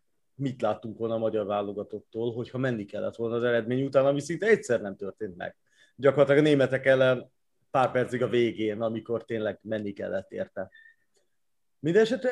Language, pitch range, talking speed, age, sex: Hungarian, 110-140 Hz, 160 wpm, 30-49, male